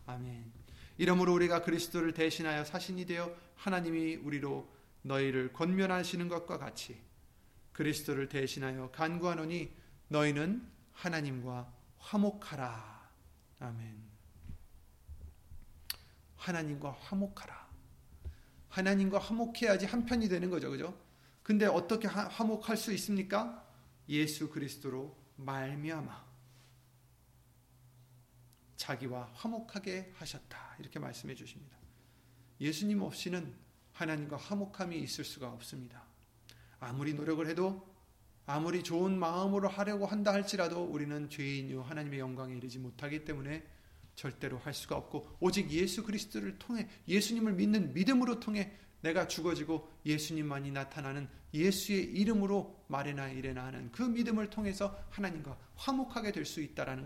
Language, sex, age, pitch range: Korean, male, 30-49, 125-190 Hz